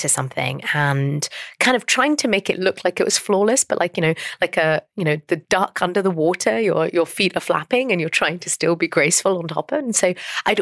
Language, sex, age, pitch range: English, female, 30-49, 150-210 Hz